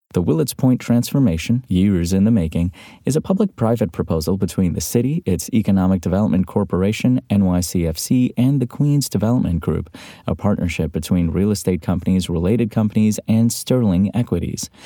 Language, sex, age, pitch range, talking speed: English, male, 30-49, 90-115 Hz, 145 wpm